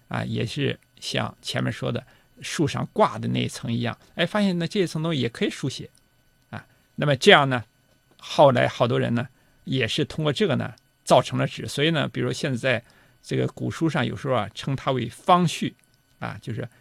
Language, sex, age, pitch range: Chinese, male, 50-69, 125-170 Hz